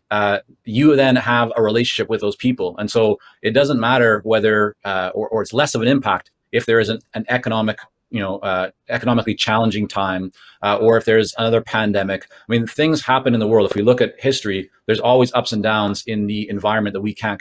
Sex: male